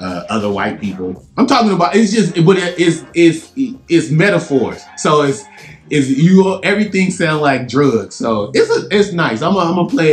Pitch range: 105-145 Hz